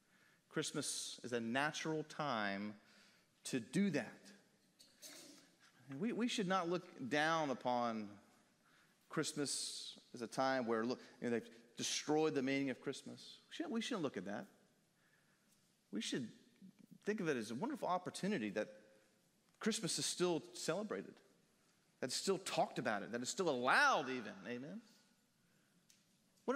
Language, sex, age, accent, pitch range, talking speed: English, male, 40-59, American, 155-210 Hz, 140 wpm